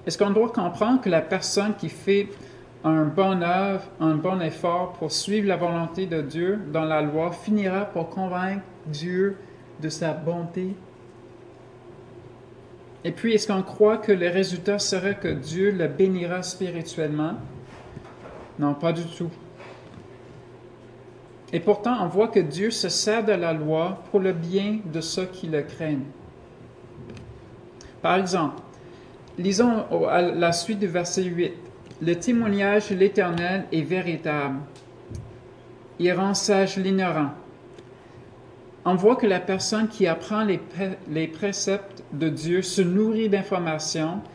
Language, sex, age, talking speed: French, male, 50-69, 135 wpm